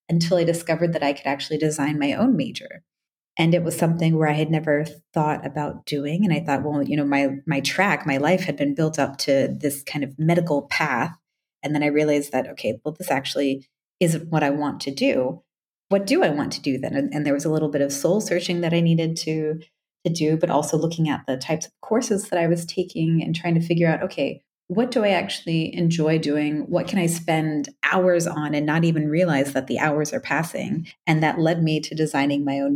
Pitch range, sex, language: 145-170 Hz, female, English